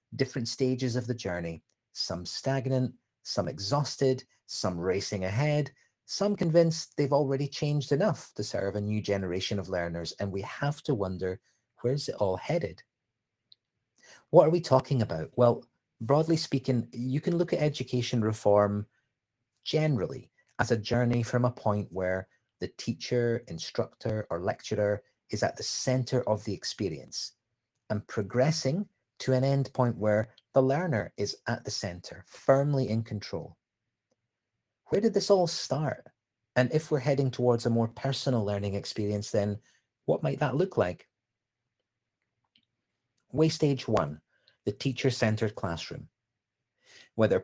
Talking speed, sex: 145 wpm, male